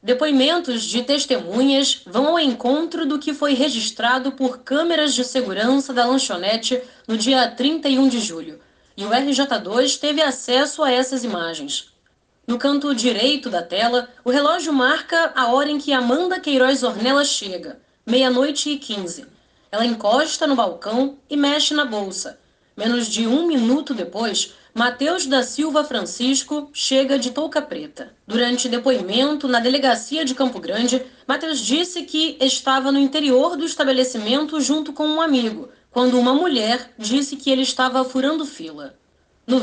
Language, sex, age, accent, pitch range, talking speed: Portuguese, female, 20-39, Brazilian, 245-295 Hz, 150 wpm